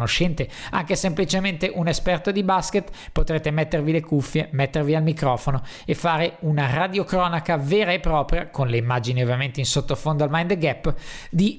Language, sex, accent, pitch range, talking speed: Italian, male, native, 145-185 Hz, 155 wpm